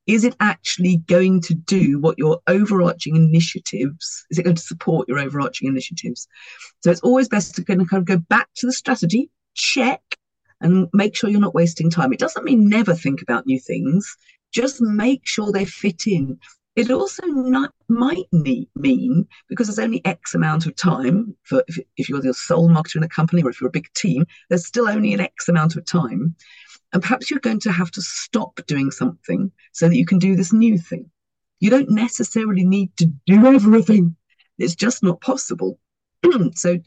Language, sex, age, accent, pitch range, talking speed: English, female, 50-69, British, 165-225 Hz, 195 wpm